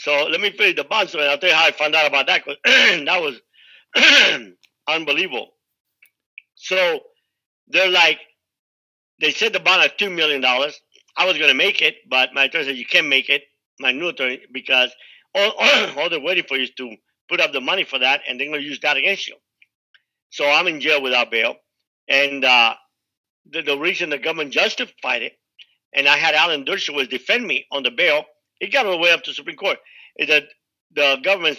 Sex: male